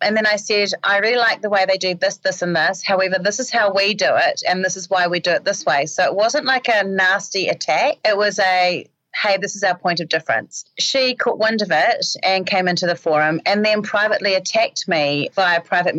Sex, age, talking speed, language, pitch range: female, 30-49, 245 wpm, English, 180-235 Hz